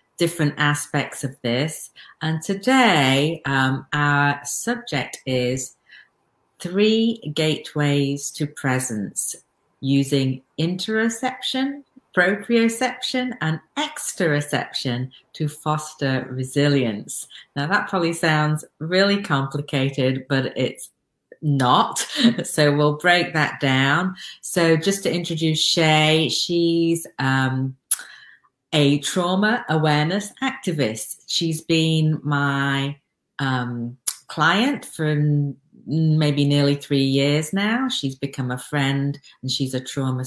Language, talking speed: English, 100 wpm